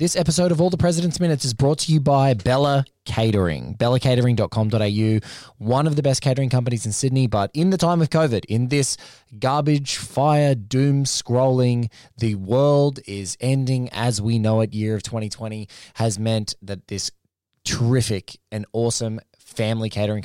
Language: English